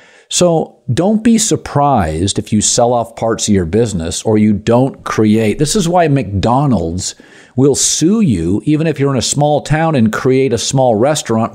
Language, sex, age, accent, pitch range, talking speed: English, male, 50-69, American, 105-135 Hz, 180 wpm